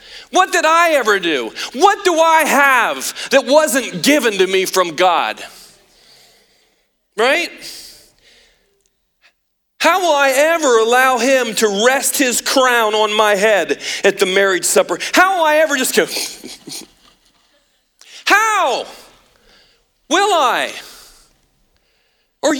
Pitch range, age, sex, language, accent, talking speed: 250-325 Hz, 40-59, male, English, American, 115 wpm